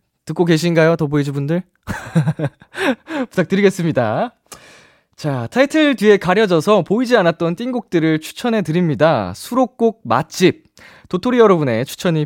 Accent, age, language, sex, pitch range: native, 20-39, Korean, male, 120-185 Hz